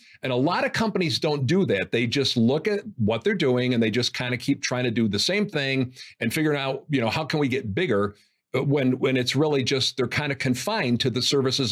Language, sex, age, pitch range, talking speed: English, male, 50-69, 115-150 Hz, 250 wpm